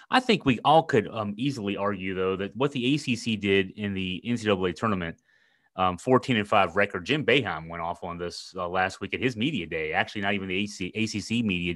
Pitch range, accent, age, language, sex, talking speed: 110-155 Hz, American, 30-49, English, male, 215 wpm